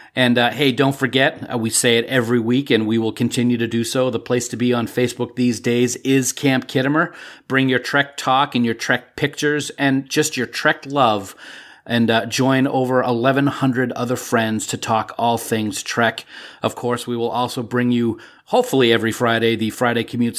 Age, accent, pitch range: 40-59, American, 115-130 Hz